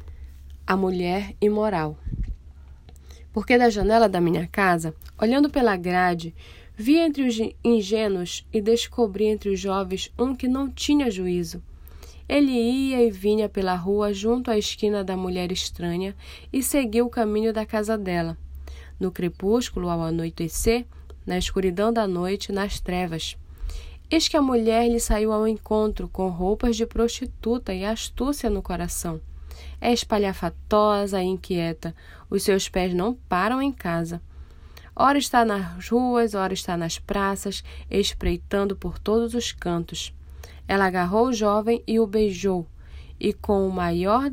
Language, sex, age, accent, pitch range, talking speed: Portuguese, female, 10-29, Brazilian, 175-230 Hz, 145 wpm